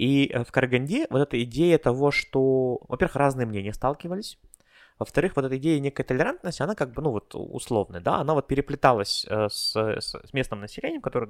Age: 20-39